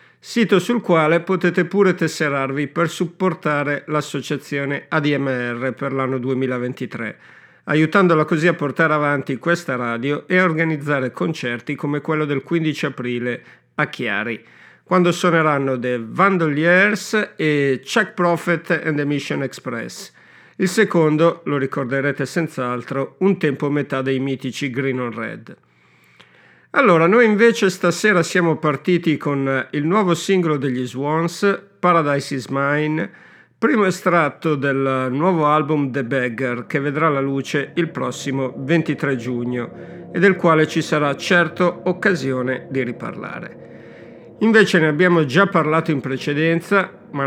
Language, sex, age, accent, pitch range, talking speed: Italian, male, 50-69, native, 135-175 Hz, 130 wpm